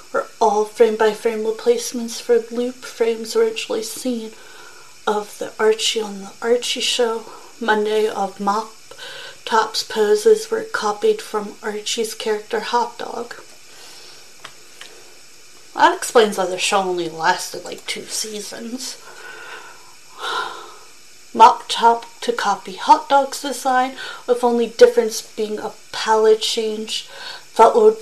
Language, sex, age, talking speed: English, female, 30-49, 115 wpm